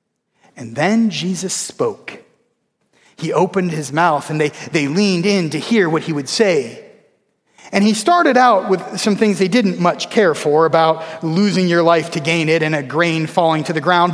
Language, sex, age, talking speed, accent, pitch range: English, male, 30-49, 190 wpm, American, 180-230 Hz